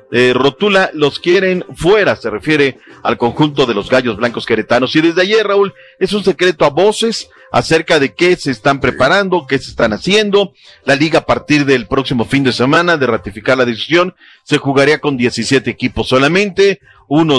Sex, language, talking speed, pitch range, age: male, Spanish, 185 wpm, 130-175 Hz, 40-59